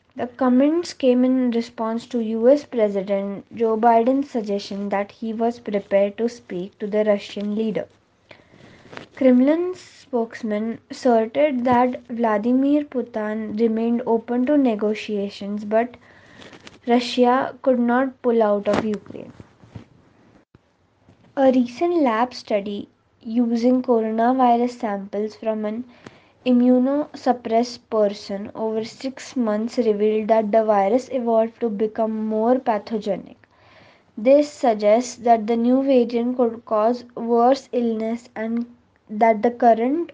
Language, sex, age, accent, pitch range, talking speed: English, female, 20-39, Indian, 215-250 Hz, 115 wpm